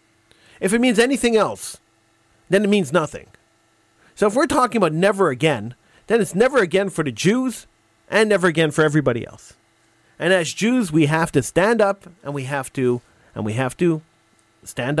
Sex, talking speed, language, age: male, 185 wpm, English, 40-59